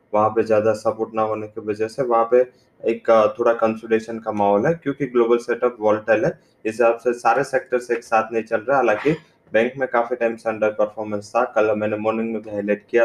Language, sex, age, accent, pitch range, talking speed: English, male, 20-39, Indian, 105-115 Hz, 210 wpm